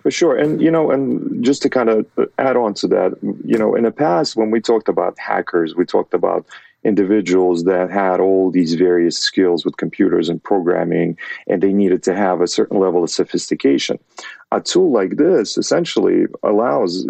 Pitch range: 90-110 Hz